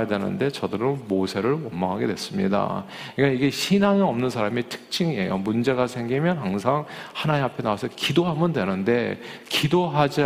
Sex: male